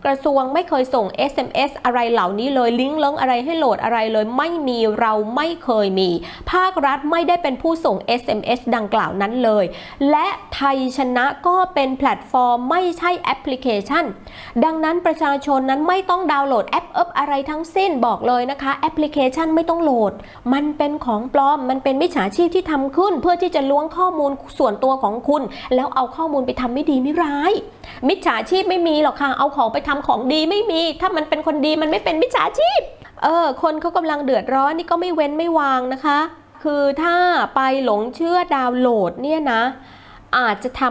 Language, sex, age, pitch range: Thai, female, 20-39, 245-320 Hz